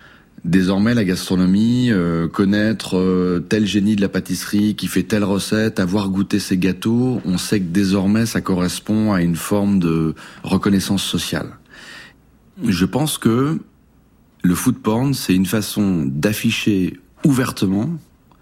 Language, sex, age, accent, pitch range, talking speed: French, male, 40-59, French, 90-105 Hz, 135 wpm